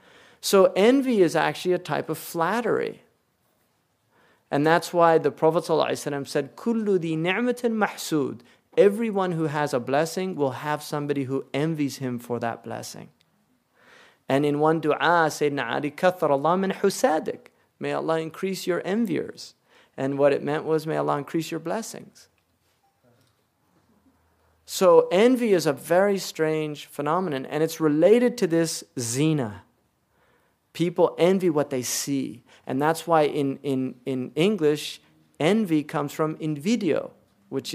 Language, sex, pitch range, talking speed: English, male, 130-165 Hz, 130 wpm